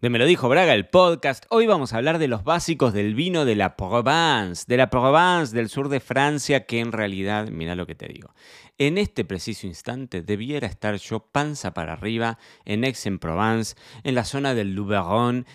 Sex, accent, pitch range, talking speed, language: male, Argentinian, 95-135 Hz, 195 wpm, Spanish